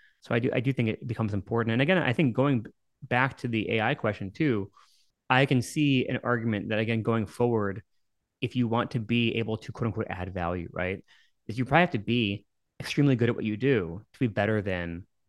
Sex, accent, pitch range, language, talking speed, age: male, American, 100-125 Hz, English, 225 wpm, 20-39